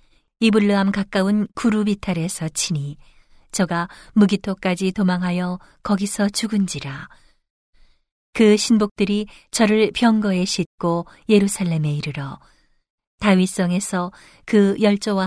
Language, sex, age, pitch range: Korean, female, 40-59, 160-210 Hz